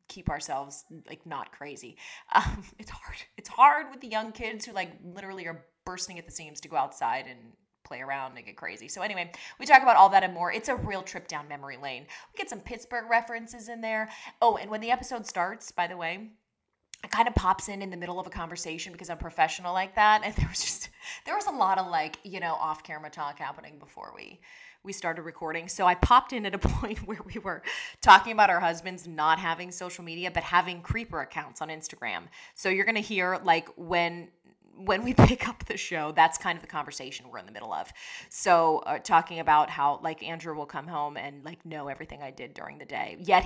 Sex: female